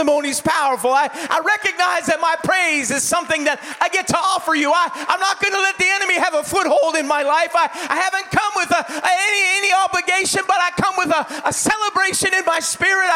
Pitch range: 325-380 Hz